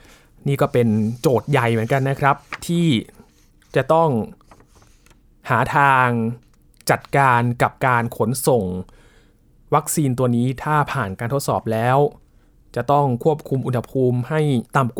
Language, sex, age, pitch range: Thai, male, 20-39, 120-155 Hz